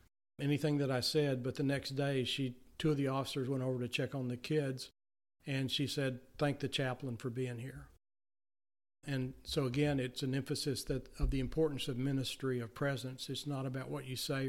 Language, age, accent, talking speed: English, 50-69, American, 205 wpm